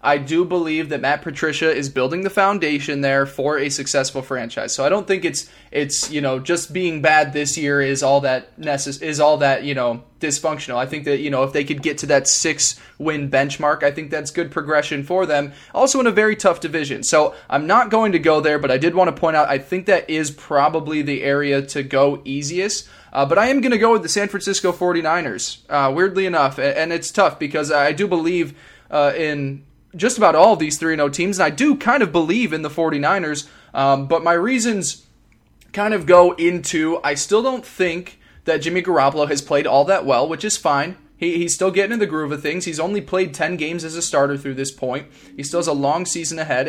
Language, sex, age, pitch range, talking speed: English, male, 10-29, 140-175 Hz, 230 wpm